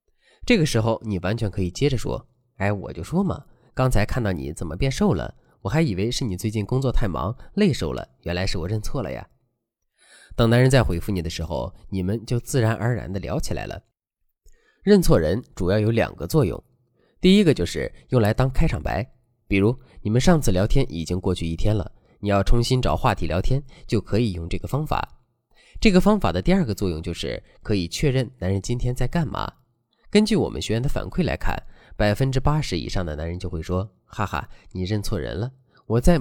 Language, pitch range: Chinese, 100-130 Hz